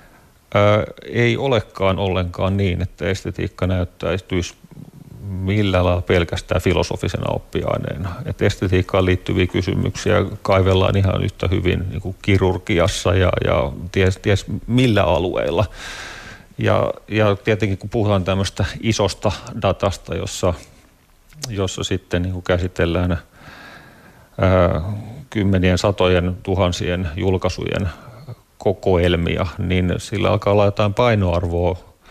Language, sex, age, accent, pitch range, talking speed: Finnish, male, 30-49, native, 90-105 Hz, 100 wpm